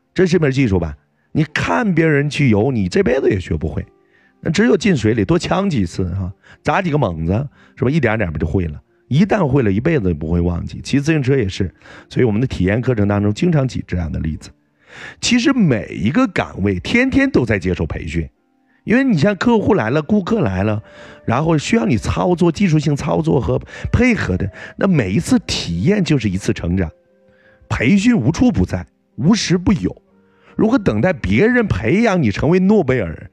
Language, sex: Chinese, male